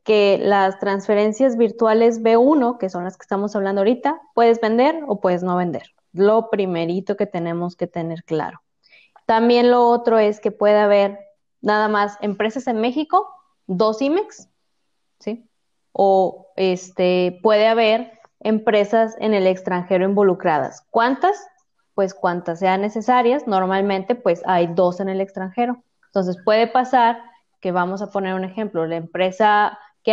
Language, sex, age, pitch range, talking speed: Spanish, female, 20-39, 185-235 Hz, 145 wpm